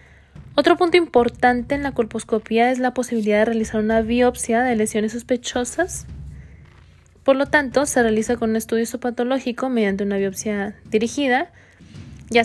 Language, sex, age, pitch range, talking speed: Spanish, female, 20-39, 210-255 Hz, 145 wpm